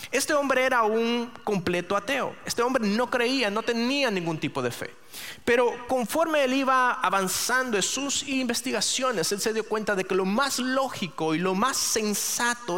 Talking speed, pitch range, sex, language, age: 175 wpm, 180-250 Hz, male, Spanish, 30-49